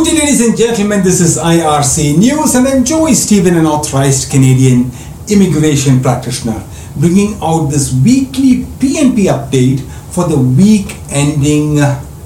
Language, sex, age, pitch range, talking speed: English, male, 60-79, 115-155 Hz, 125 wpm